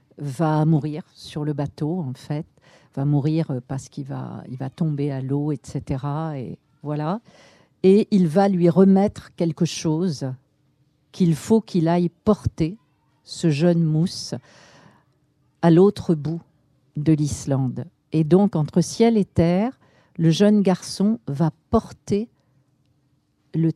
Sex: female